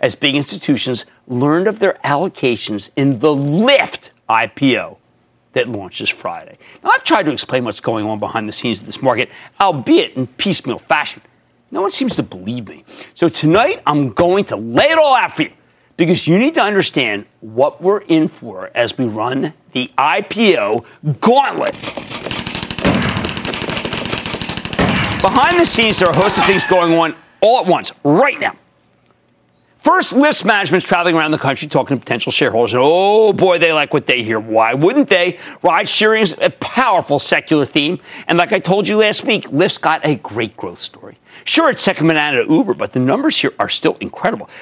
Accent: American